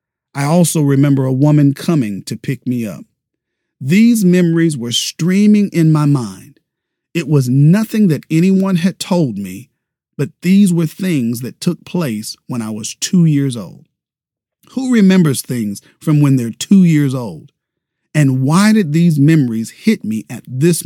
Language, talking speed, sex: English, 160 wpm, male